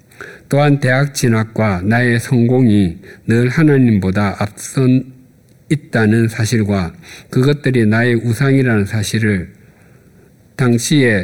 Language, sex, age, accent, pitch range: Korean, male, 50-69, native, 100-125 Hz